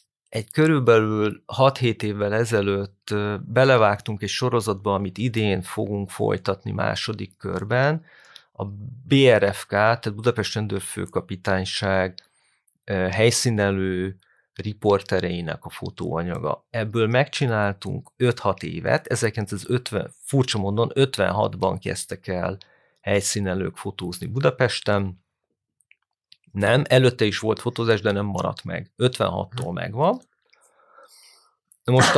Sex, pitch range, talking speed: male, 100-125 Hz, 90 wpm